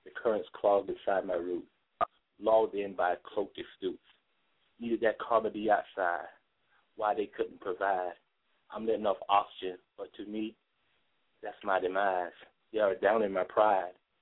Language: English